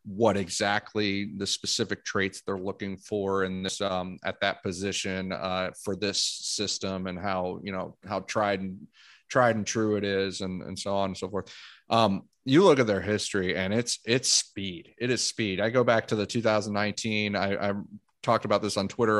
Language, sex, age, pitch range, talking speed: English, male, 30-49, 95-110 Hz, 195 wpm